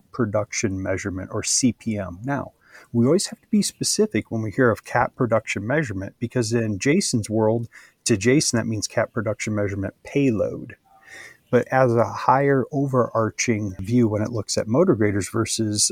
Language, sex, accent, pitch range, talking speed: English, male, American, 105-125 Hz, 160 wpm